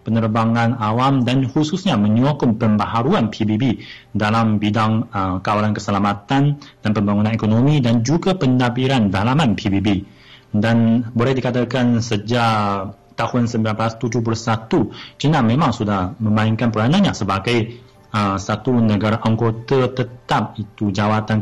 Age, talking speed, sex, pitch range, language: 30-49, 110 wpm, male, 110-135 Hz, Malay